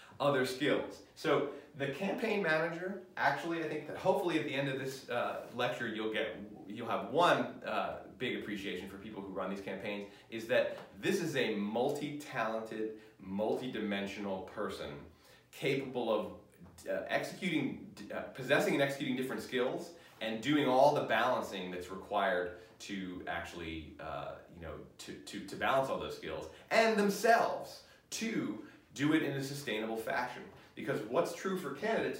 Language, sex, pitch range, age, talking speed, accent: English, male, 105-145 Hz, 30-49, 155 wpm, American